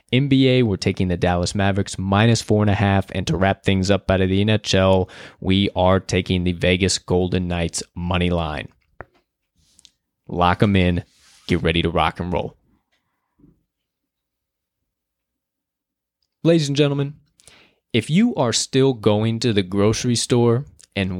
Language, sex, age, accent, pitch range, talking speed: English, male, 20-39, American, 100-140 Hz, 145 wpm